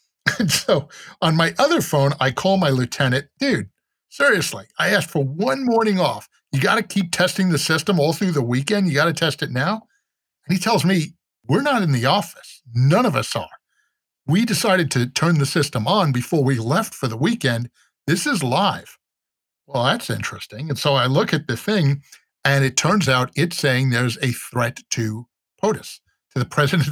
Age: 50-69